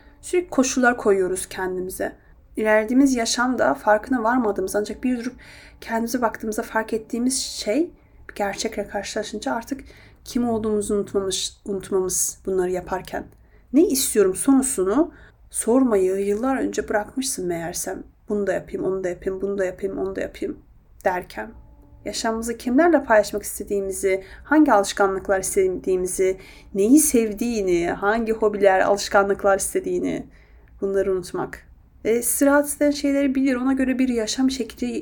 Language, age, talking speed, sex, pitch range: Turkish, 30-49, 120 wpm, female, 200-285 Hz